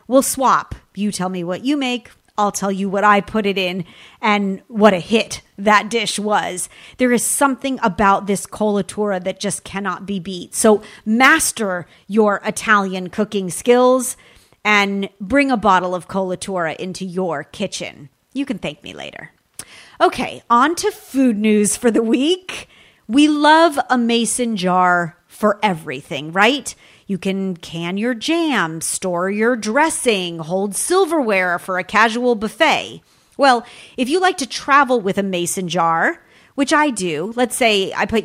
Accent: American